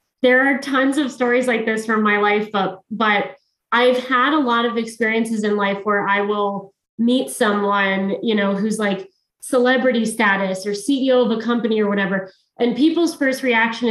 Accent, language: American, English